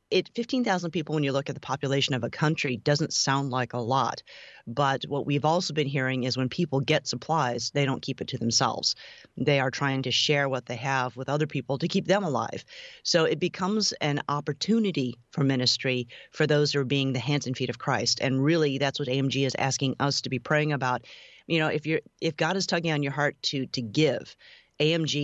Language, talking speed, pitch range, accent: English, 225 wpm, 130-155 Hz, American